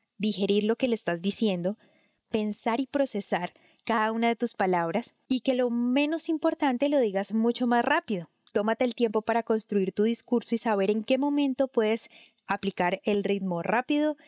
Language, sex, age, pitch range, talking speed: Spanish, female, 10-29, 195-235 Hz, 170 wpm